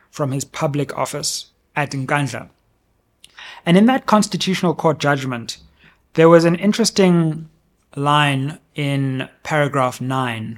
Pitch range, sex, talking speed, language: 130-165 Hz, male, 115 wpm, English